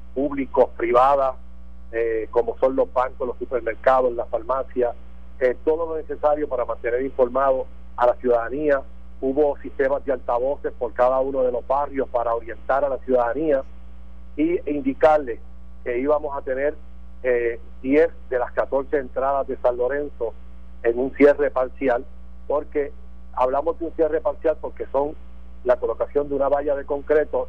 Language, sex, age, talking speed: Spanish, male, 50-69, 155 wpm